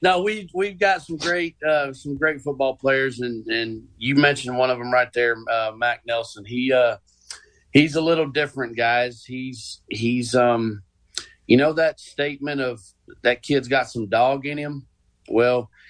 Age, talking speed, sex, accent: 40-59, 175 wpm, male, American